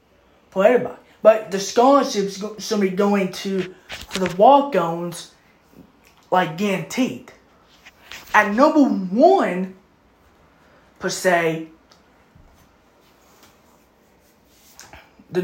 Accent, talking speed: American, 75 wpm